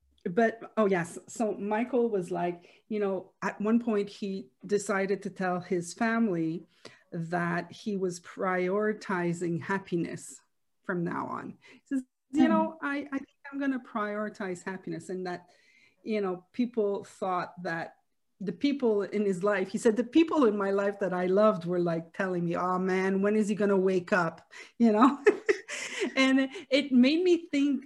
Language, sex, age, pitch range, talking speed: English, female, 40-59, 190-250 Hz, 170 wpm